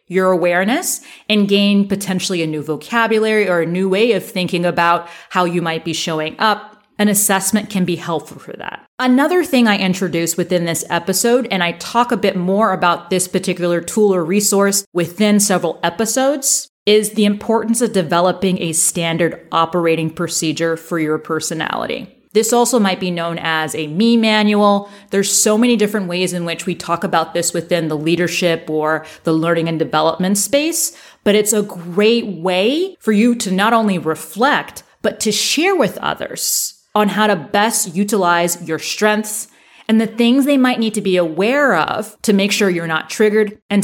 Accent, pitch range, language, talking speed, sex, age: American, 170-220 Hz, English, 180 wpm, female, 30-49